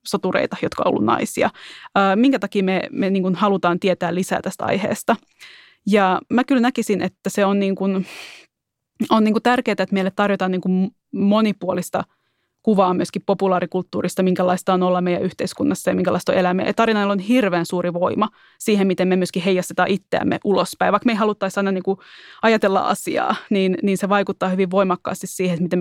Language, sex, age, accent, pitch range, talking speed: Finnish, female, 20-39, native, 185-205 Hz, 165 wpm